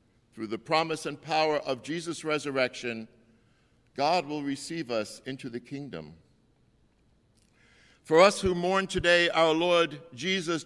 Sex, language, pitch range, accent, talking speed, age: male, English, 120-155 Hz, American, 130 wpm, 60-79